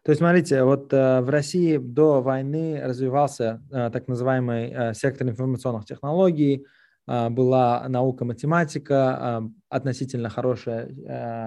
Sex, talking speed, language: male, 100 wpm, English